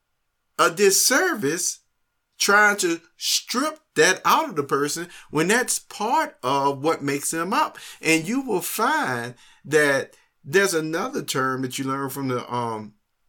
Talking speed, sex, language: 145 wpm, male, English